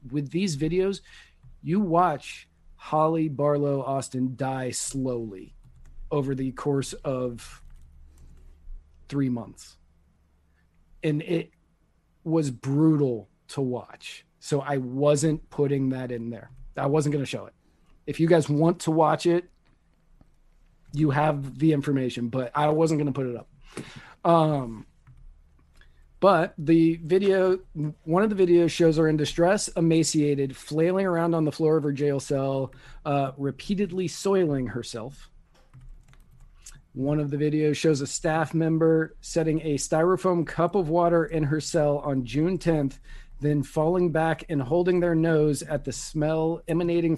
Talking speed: 140 wpm